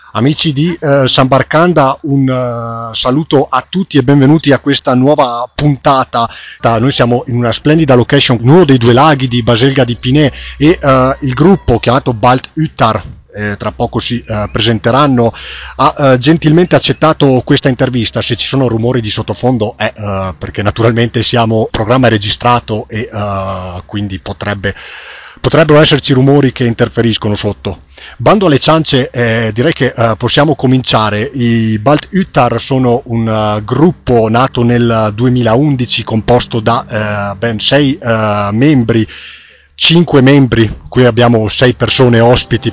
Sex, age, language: male, 30-49, Italian